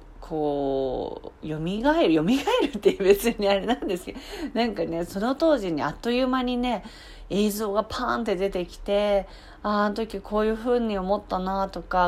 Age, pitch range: 40-59, 165-220 Hz